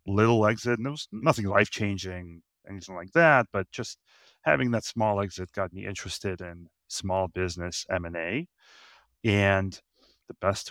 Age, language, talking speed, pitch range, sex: 30-49, English, 145 wpm, 90-105 Hz, male